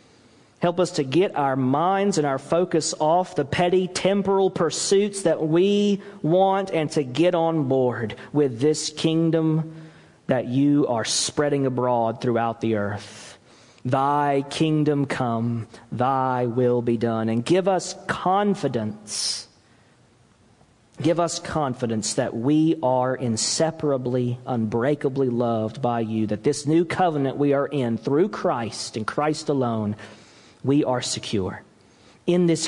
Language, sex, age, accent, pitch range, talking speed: English, male, 40-59, American, 115-155 Hz, 130 wpm